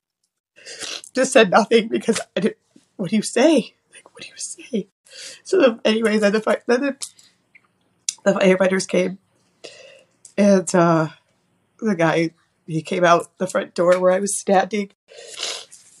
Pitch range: 180-230 Hz